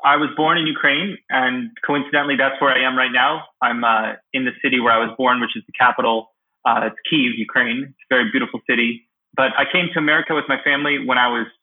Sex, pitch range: male, 120-150 Hz